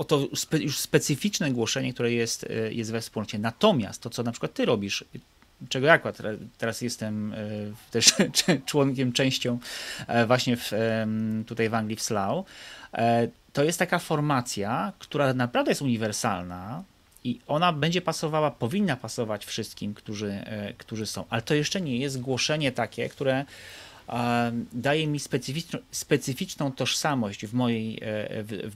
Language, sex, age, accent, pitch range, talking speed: Polish, male, 30-49, native, 110-140 Hz, 145 wpm